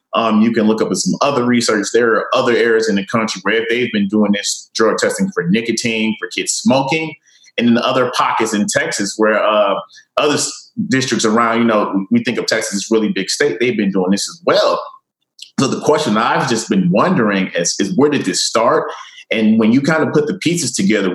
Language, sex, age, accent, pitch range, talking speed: English, male, 30-49, American, 105-140 Hz, 220 wpm